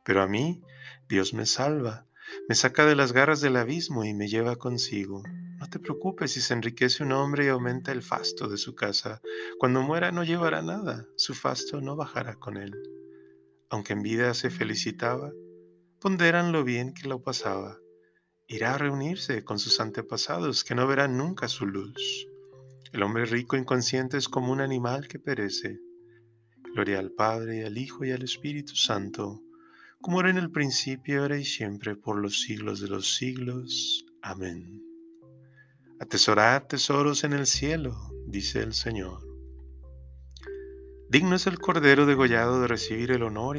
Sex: male